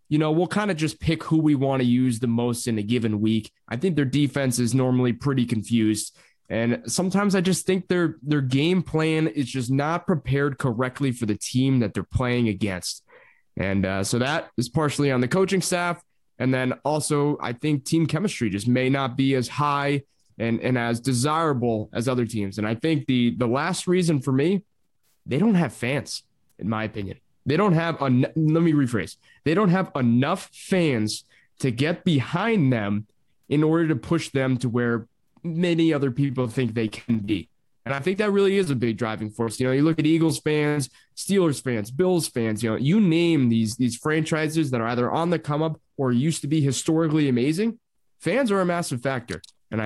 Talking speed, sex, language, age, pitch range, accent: 205 wpm, male, English, 20-39, 120-160 Hz, American